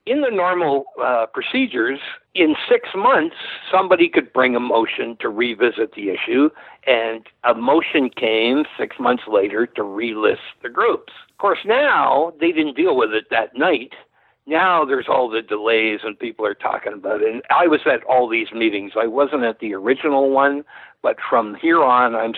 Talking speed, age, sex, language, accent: 175 wpm, 60-79, male, English, American